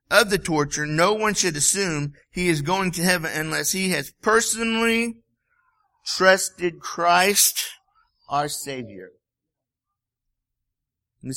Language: English